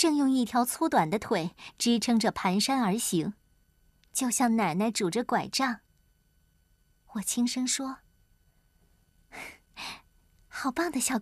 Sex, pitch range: male, 195-270 Hz